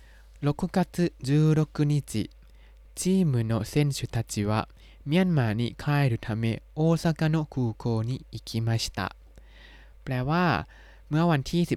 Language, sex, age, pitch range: Thai, male, 20-39, 110-145 Hz